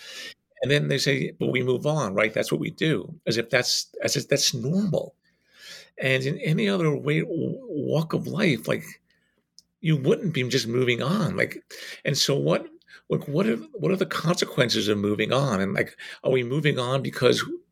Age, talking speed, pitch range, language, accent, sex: 50-69, 190 wpm, 105-150 Hz, English, American, male